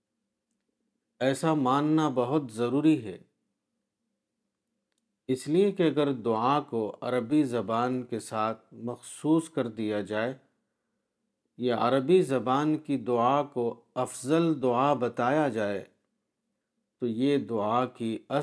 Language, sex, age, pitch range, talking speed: Urdu, male, 50-69, 115-145 Hz, 105 wpm